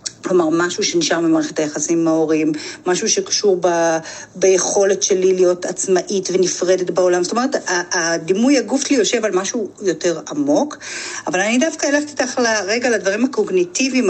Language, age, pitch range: Hebrew, 40-59, 190-290 Hz